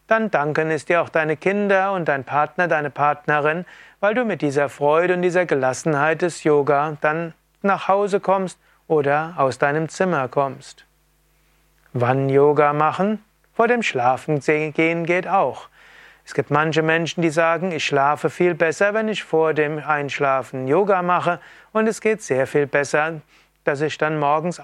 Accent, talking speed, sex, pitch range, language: German, 165 wpm, male, 145-185 Hz, German